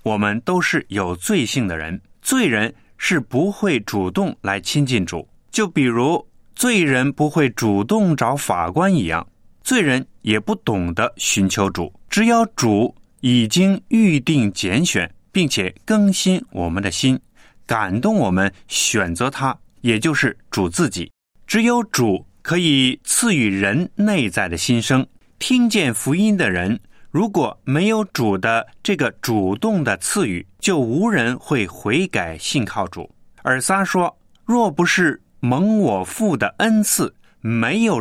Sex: male